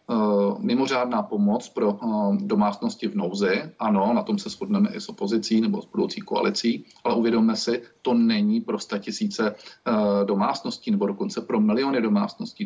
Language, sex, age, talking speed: Czech, male, 40-59, 165 wpm